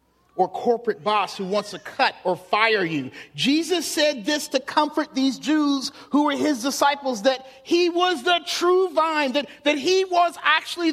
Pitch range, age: 215-335 Hz, 40-59